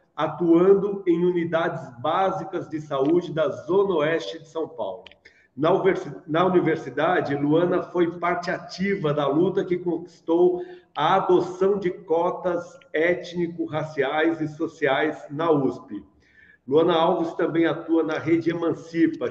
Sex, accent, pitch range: male, Brazilian, 160-190 Hz